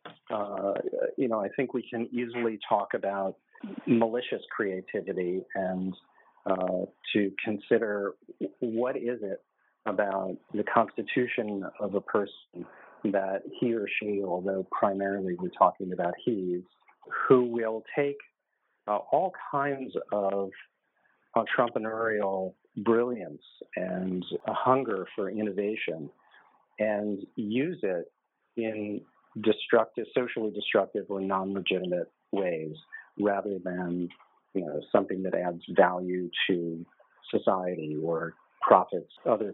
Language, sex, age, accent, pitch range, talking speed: English, male, 40-59, American, 95-115 Hz, 110 wpm